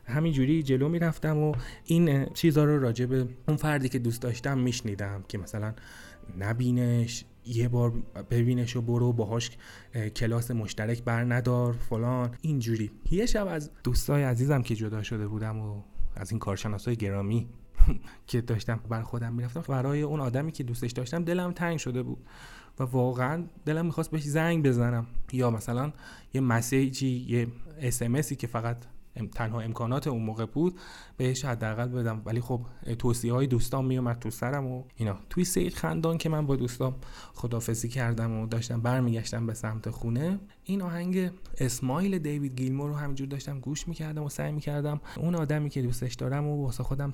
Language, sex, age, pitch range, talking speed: Persian, male, 30-49, 115-145 Hz, 165 wpm